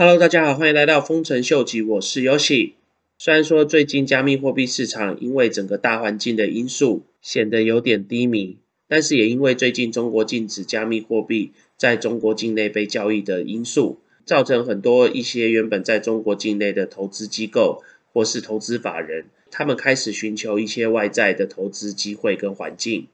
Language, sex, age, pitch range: Chinese, male, 20-39, 105-130 Hz